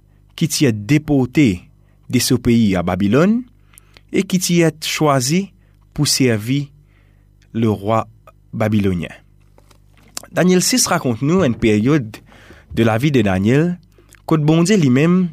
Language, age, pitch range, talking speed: French, 30-49, 105-150 Hz, 135 wpm